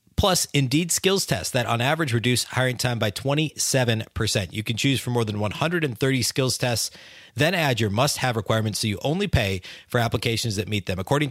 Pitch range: 110-140 Hz